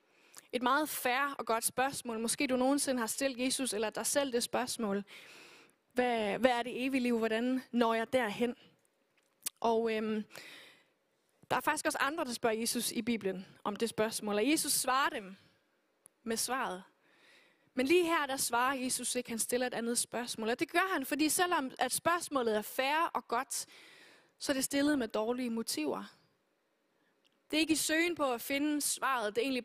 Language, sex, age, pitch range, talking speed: Danish, female, 20-39, 230-280 Hz, 185 wpm